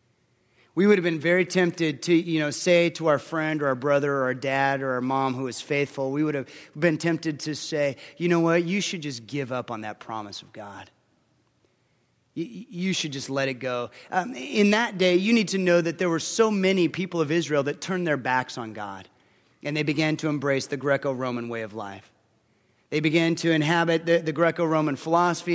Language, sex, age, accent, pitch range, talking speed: English, male, 30-49, American, 135-170 Hz, 215 wpm